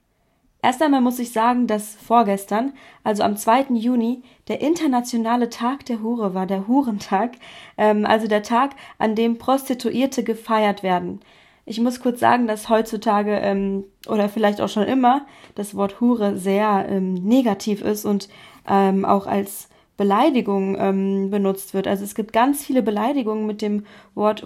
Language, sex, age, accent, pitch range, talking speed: German, female, 20-39, German, 210-245 Hz, 155 wpm